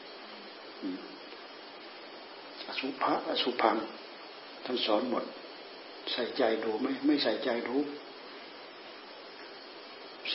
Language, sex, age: Thai, male, 60-79